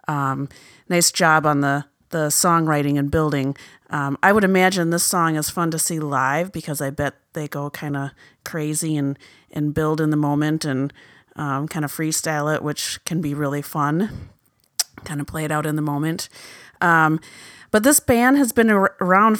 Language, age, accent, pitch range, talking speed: English, 30-49, American, 150-175 Hz, 185 wpm